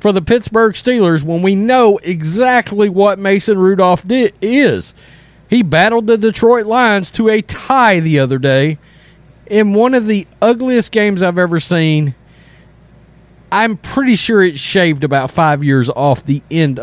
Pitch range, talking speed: 145-210 Hz, 155 wpm